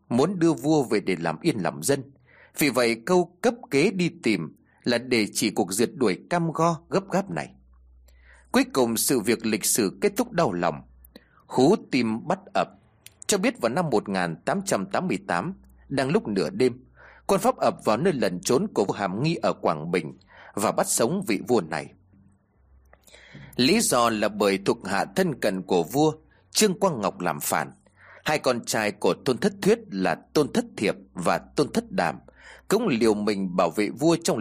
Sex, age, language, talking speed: male, 30-49, Vietnamese, 185 wpm